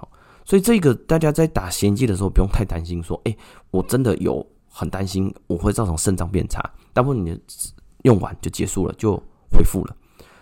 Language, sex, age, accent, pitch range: Chinese, male, 20-39, native, 85-115 Hz